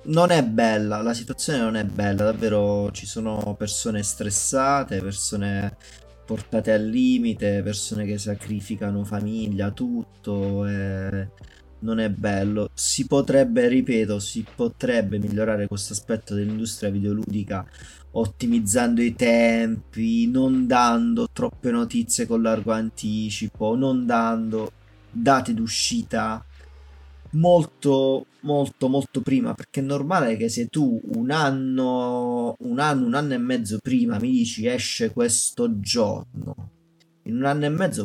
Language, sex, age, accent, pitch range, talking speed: Italian, male, 20-39, native, 105-140 Hz, 125 wpm